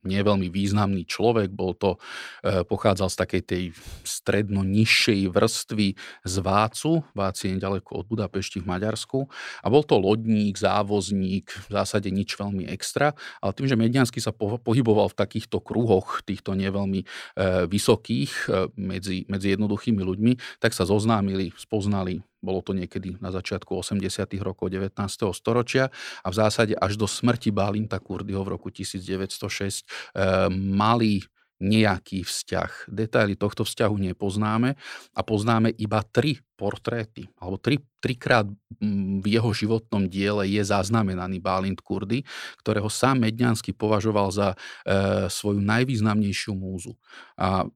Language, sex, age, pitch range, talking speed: Slovak, male, 40-59, 95-110 Hz, 135 wpm